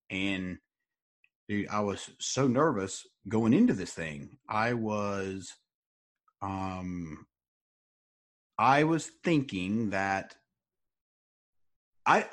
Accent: American